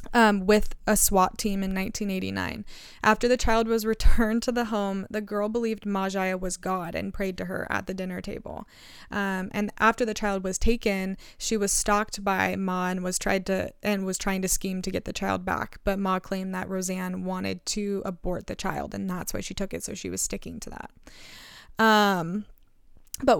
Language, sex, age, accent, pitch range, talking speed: English, female, 20-39, American, 190-215 Hz, 205 wpm